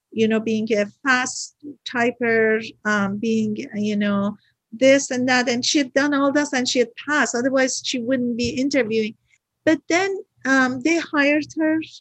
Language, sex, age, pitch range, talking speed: English, female, 50-69, 220-265 Hz, 170 wpm